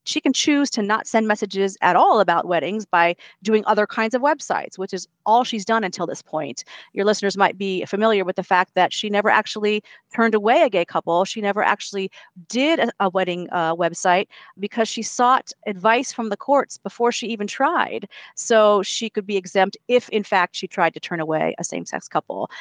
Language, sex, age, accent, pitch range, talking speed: English, female, 40-59, American, 185-235 Hz, 205 wpm